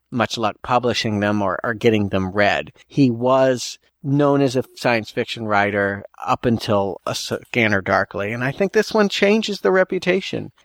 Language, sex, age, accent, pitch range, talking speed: English, male, 40-59, American, 115-140 Hz, 170 wpm